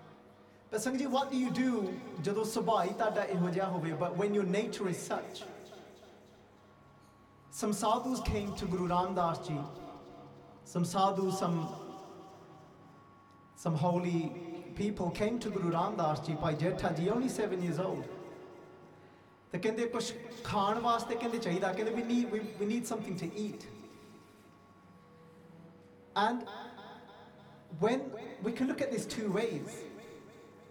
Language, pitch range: English, 170-220 Hz